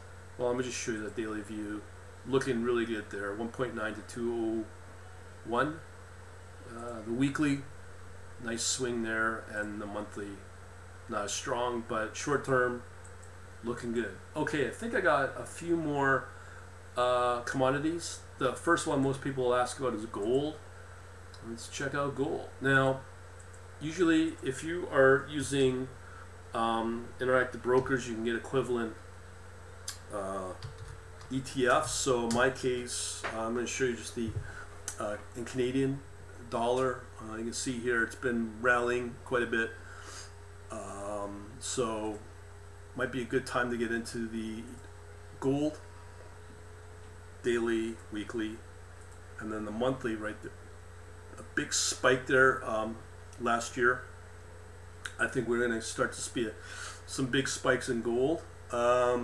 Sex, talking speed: male, 140 wpm